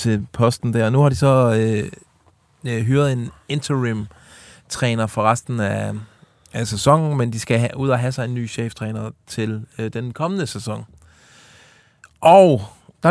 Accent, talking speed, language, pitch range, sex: native, 160 wpm, Danish, 110-135 Hz, male